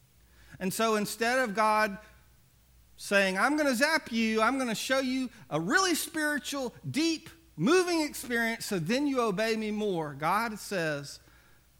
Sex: male